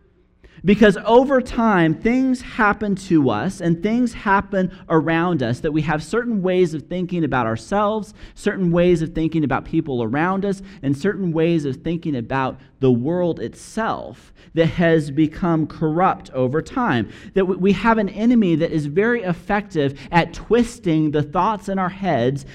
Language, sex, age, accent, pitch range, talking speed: English, male, 40-59, American, 155-200 Hz, 160 wpm